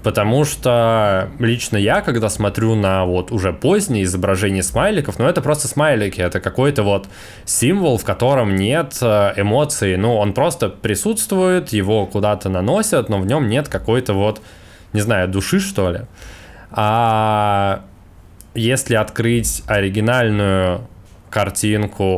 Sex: male